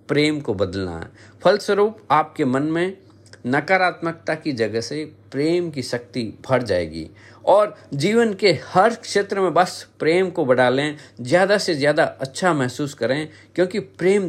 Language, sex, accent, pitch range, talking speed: Hindi, male, native, 110-160 Hz, 150 wpm